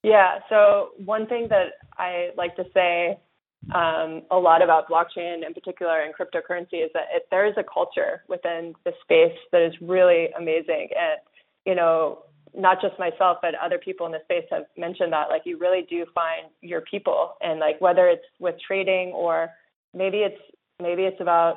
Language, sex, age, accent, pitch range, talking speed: English, female, 20-39, American, 165-190 Hz, 185 wpm